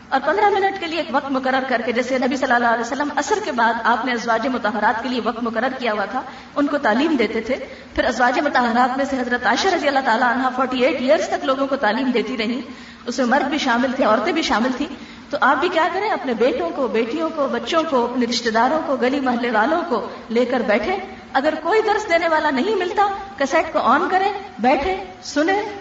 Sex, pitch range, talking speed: female, 240-315 Hz, 235 wpm